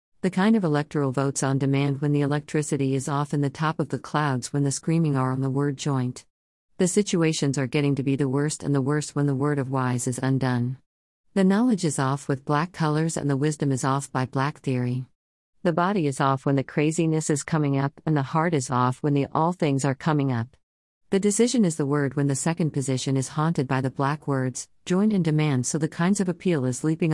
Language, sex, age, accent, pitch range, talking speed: English, female, 50-69, American, 135-155 Hz, 235 wpm